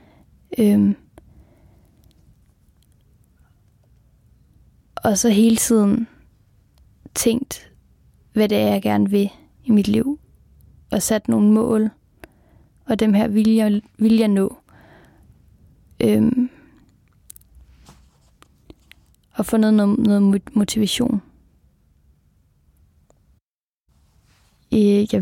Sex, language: female, Danish